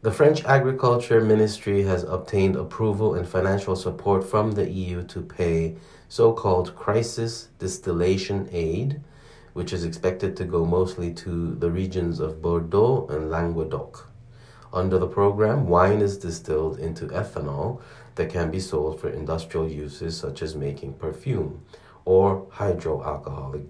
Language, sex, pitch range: Korean, male, 85-110 Hz